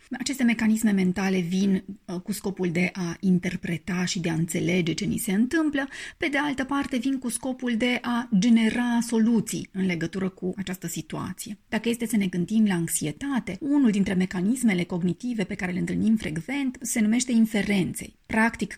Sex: female